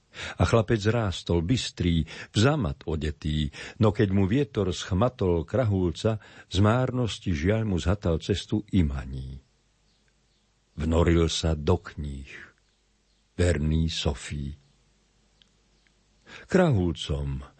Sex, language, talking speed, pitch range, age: male, Slovak, 90 wpm, 80-105 Hz, 50-69